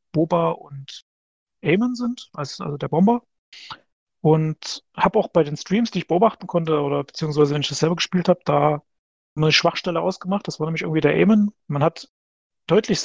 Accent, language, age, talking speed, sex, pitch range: German, German, 40-59, 175 wpm, male, 155-185 Hz